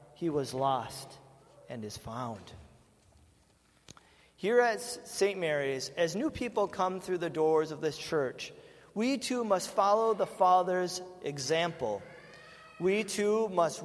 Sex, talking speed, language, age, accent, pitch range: male, 130 wpm, English, 40-59, American, 160-215 Hz